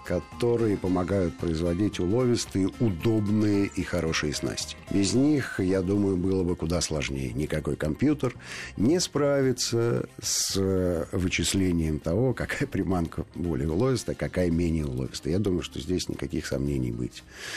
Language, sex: Russian, male